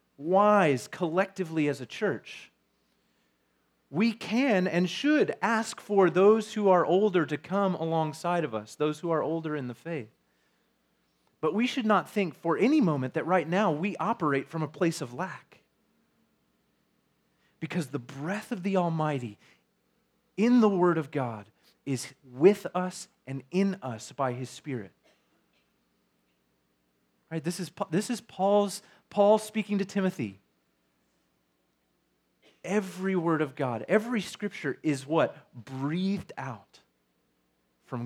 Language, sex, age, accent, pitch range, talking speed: English, male, 30-49, American, 125-190 Hz, 130 wpm